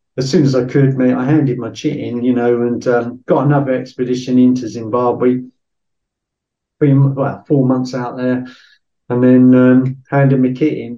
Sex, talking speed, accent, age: male, 180 wpm, British, 50-69